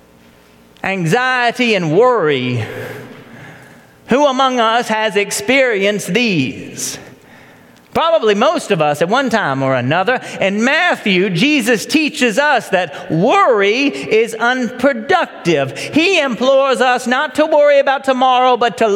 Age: 40-59